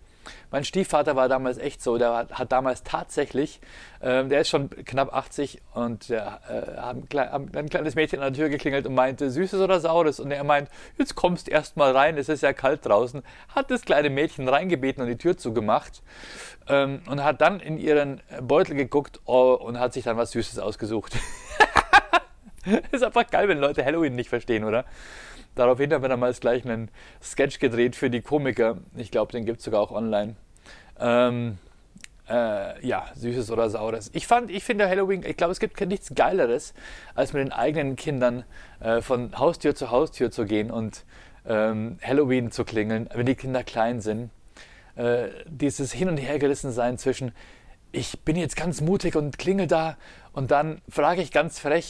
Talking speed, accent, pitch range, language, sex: 180 wpm, German, 120-155 Hz, German, male